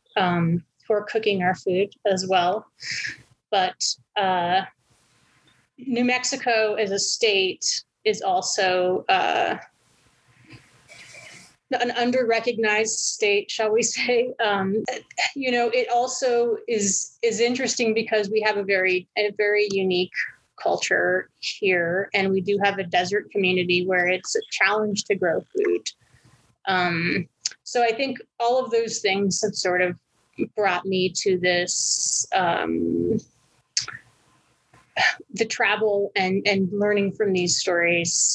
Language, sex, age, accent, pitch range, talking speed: English, female, 30-49, American, 185-230 Hz, 125 wpm